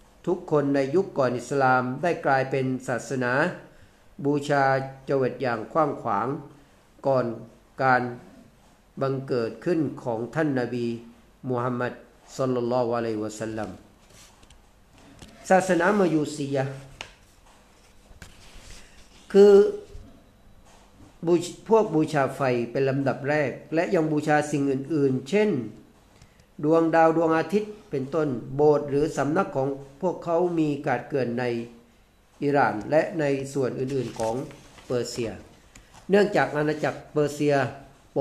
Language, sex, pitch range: Thai, male, 120-150 Hz